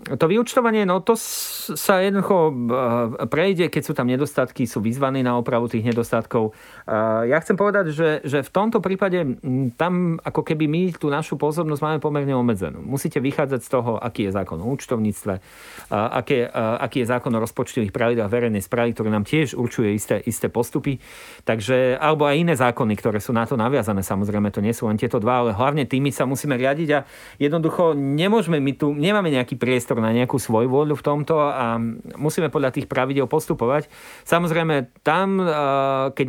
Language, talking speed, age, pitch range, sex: Slovak, 175 wpm, 40-59, 120-155 Hz, male